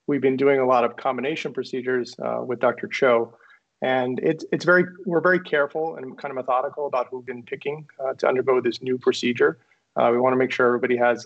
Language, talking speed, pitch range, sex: English, 225 wpm, 125-150 Hz, male